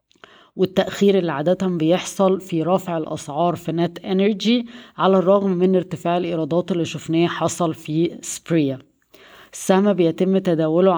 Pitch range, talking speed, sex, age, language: 155-180 Hz, 125 wpm, female, 20-39, Arabic